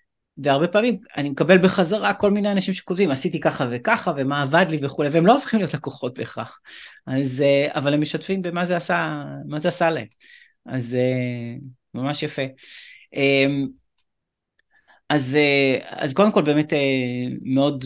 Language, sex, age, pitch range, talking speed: English, male, 30-49, 125-155 Hz, 135 wpm